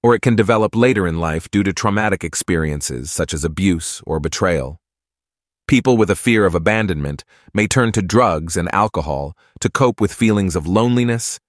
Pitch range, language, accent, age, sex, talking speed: 80-110 Hz, English, American, 30-49, male, 180 wpm